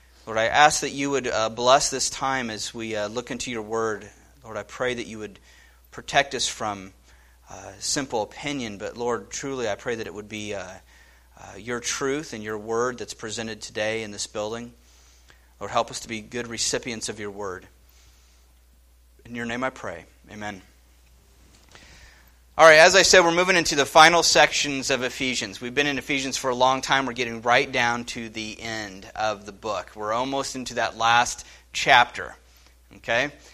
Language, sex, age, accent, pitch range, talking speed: English, male, 30-49, American, 80-130 Hz, 180 wpm